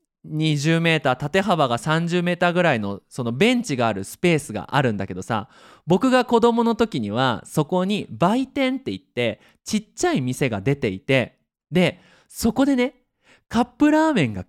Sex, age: male, 20-39